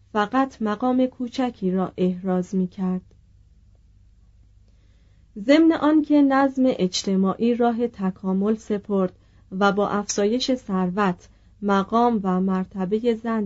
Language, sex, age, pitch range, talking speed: Persian, female, 30-49, 185-230 Hz, 105 wpm